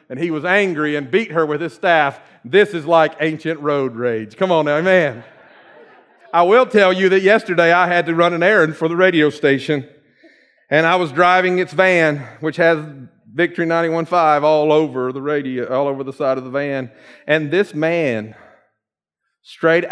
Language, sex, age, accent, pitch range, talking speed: English, male, 40-59, American, 140-180 Hz, 170 wpm